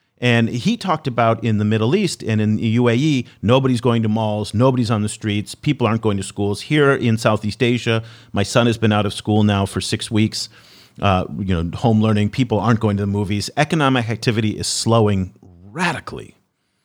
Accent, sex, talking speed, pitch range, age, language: American, male, 200 wpm, 105-125 Hz, 40-59, English